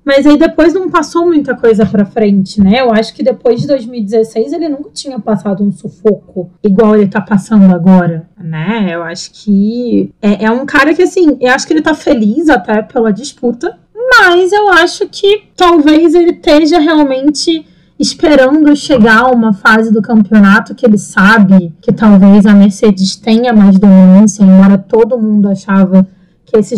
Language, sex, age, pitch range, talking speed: Portuguese, female, 20-39, 205-295 Hz, 175 wpm